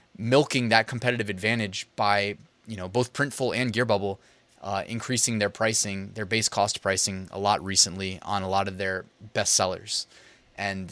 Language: English